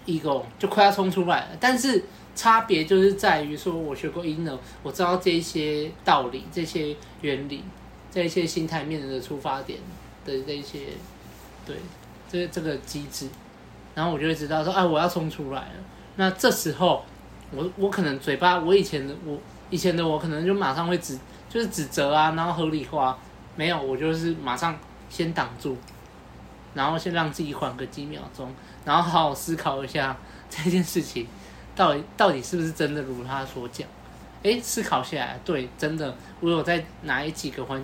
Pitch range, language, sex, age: 145-180 Hz, Chinese, male, 20-39